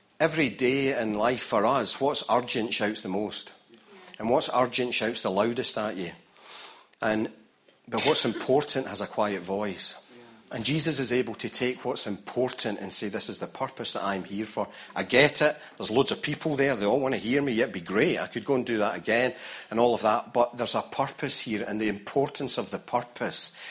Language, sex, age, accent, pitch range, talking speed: English, male, 40-59, British, 105-125 Hz, 215 wpm